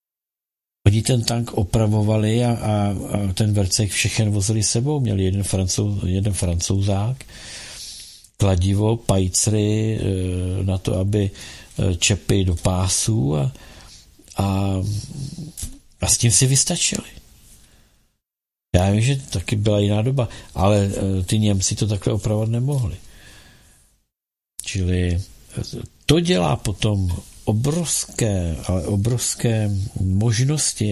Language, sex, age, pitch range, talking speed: Czech, male, 50-69, 95-115 Hz, 105 wpm